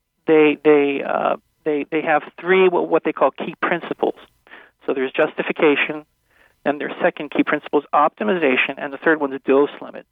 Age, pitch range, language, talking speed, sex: 40-59, 140-155 Hz, English, 170 wpm, male